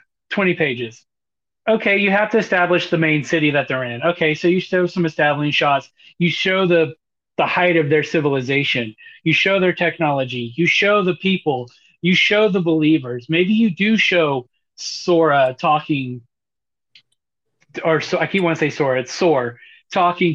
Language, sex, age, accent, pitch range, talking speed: English, male, 30-49, American, 155-220 Hz, 165 wpm